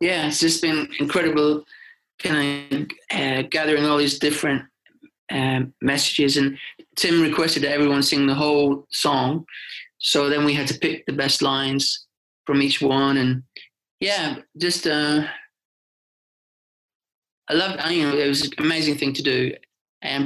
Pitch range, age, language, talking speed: 135-150 Hz, 30-49, English, 150 wpm